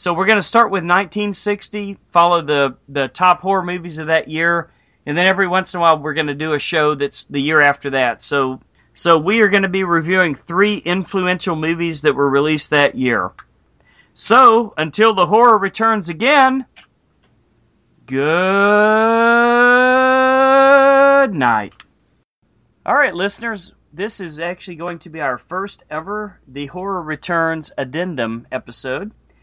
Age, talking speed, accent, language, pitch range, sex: 40-59, 150 wpm, American, English, 160-220 Hz, male